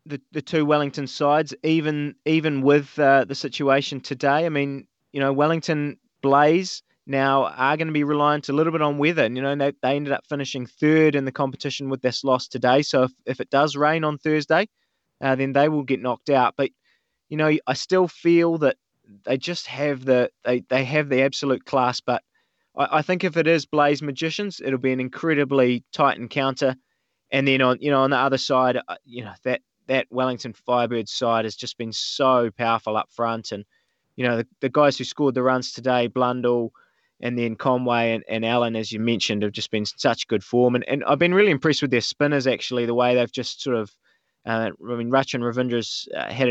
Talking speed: 215 wpm